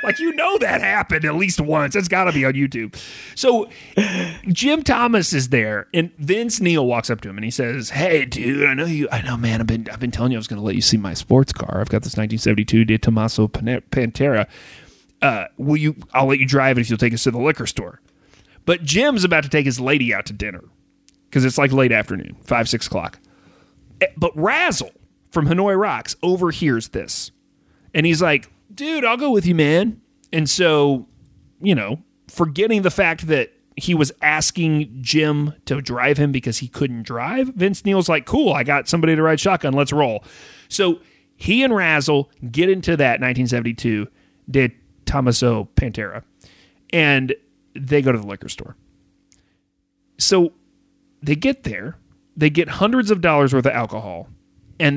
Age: 30-49